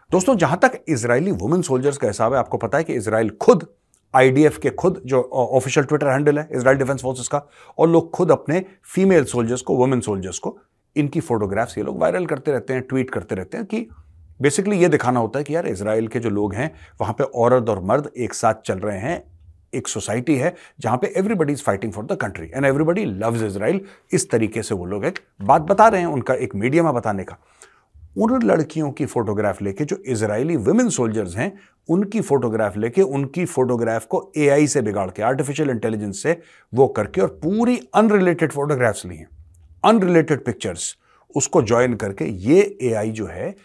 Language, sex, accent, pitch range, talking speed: Hindi, male, native, 105-155 Hz, 195 wpm